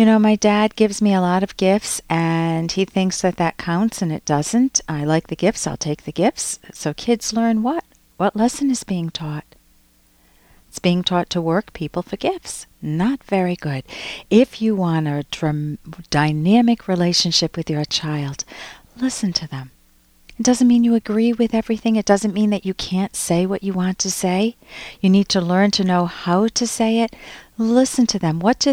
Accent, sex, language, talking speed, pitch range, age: American, female, English, 195 wpm, 170-225 Hz, 50-69